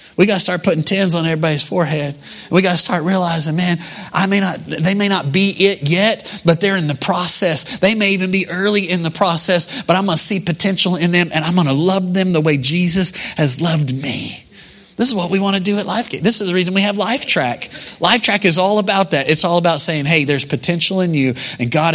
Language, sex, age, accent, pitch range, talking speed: English, male, 30-49, American, 135-180 Hz, 245 wpm